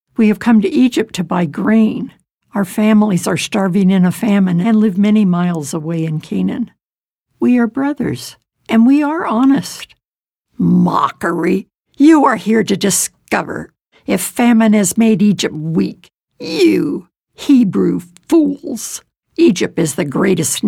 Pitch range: 190-255 Hz